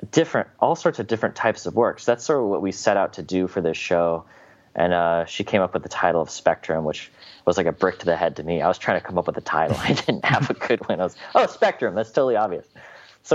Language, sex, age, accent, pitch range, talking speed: English, male, 30-49, American, 85-95 Hz, 285 wpm